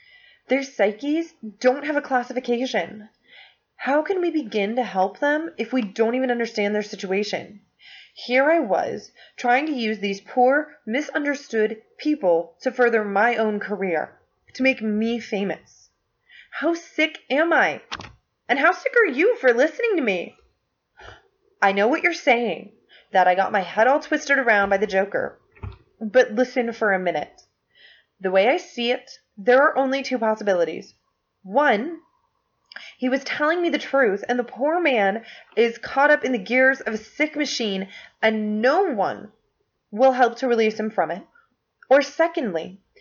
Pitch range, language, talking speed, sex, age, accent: 220-320 Hz, English, 160 wpm, female, 20-39, American